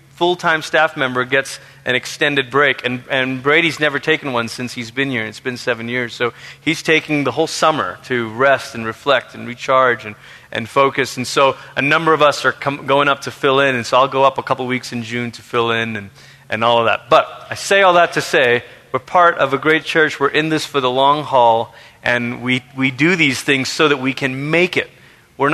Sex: male